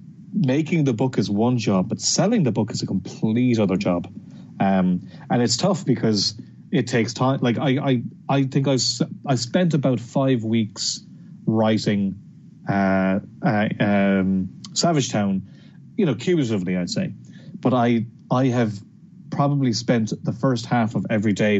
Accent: Irish